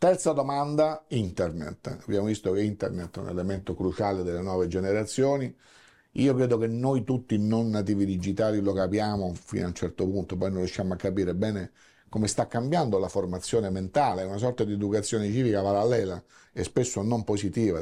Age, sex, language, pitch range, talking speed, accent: 50-69, male, Italian, 90-115 Hz, 170 wpm, native